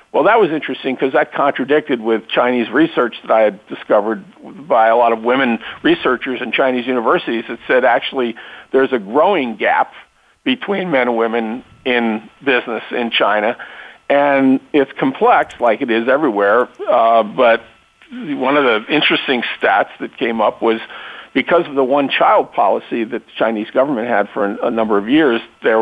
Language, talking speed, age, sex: English, 170 wpm, 50-69, male